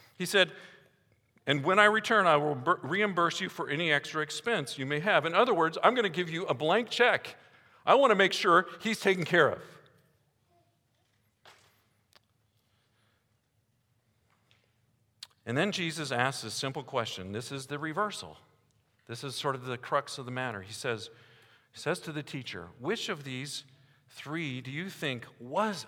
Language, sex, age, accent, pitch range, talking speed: English, male, 50-69, American, 115-170 Hz, 170 wpm